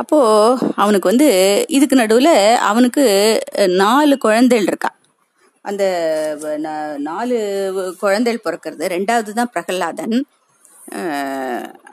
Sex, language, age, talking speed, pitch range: female, Tamil, 30-49, 80 wpm, 175-255 Hz